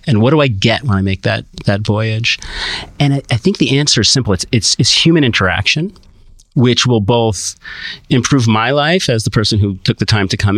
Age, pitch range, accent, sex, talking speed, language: 40-59, 100-130 Hz, American, male, 220 wpm, English